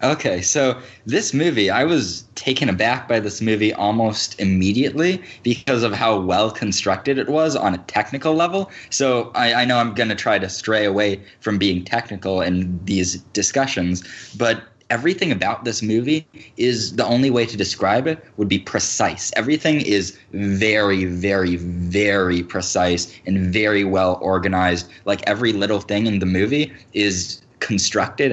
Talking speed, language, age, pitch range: 155 wpm, English, 20-39, 95-120 Hz